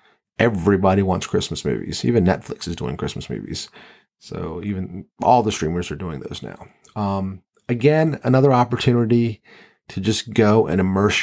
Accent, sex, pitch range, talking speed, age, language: American, male, 95-120 Hz, 150 wpm, 40-59, English